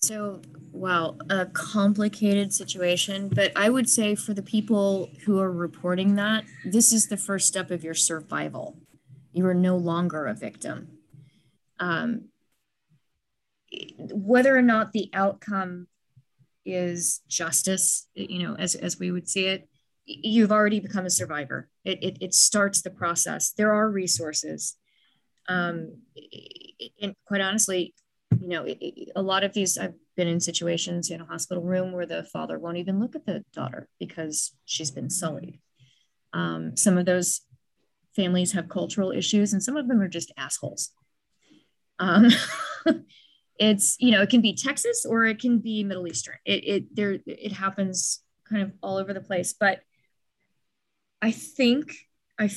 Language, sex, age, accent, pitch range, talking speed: English, female, 20-39, American, 170-210 Hz, 155 wpm